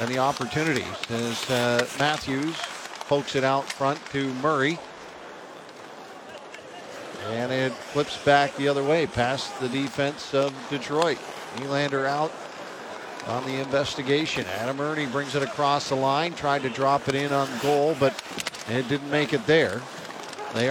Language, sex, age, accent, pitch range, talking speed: English, male, 50-69, American, 135-150 Hz, 145 wpm